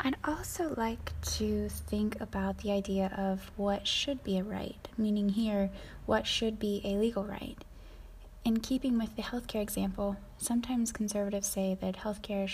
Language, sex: English, female